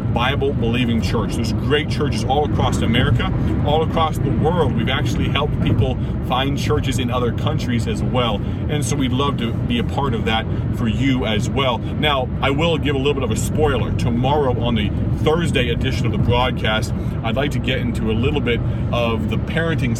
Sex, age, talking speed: male, 40-59, 200 wpm